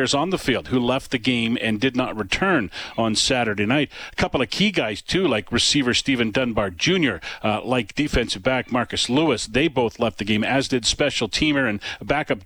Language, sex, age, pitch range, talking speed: English, male, 40-59, 105-130 Hz, 200 wpm